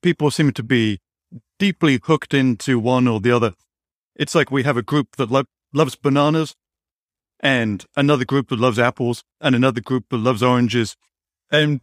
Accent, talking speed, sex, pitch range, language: British, 165 wpm, male, 110-140 Hz, English